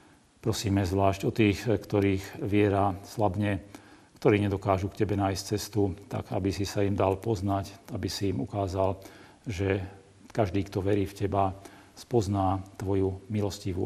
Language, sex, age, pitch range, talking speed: Slovak, male, 40-59, 95-105 Hz, 145 wpm